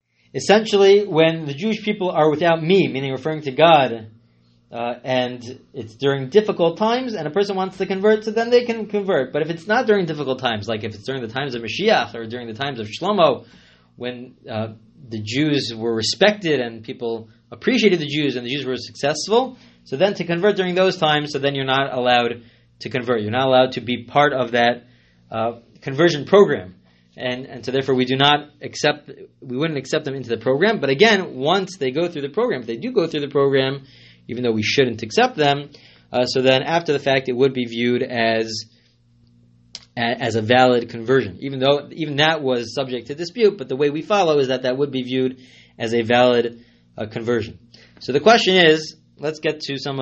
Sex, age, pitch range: male, 30-49, 120-155 Hz